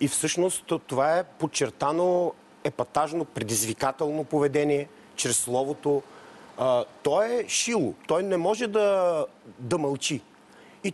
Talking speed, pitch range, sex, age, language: 115 wpm, 125-170 Hz, male, 40-59, Bulgarian